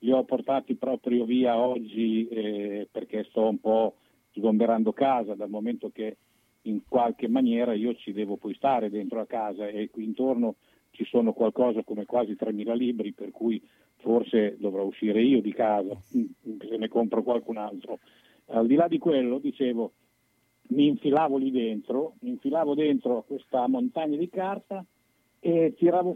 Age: 50-69